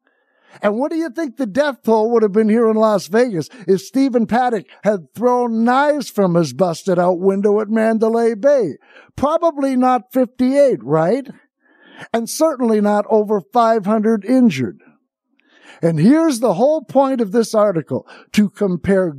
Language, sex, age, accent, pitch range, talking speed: English, male, 60-79, American, 190-255 Hz, 150 wpm